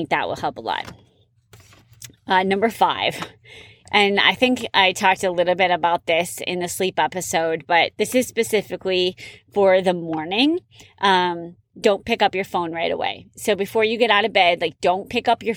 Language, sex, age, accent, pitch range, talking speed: English, female, 20-39, American, 175-220 Hz, 190 wpm